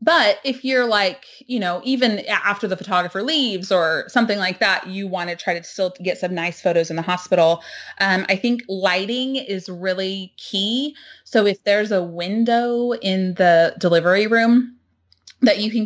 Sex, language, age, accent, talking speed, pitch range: female, English, 20-39, American, 180 wpm, 170-215 Hz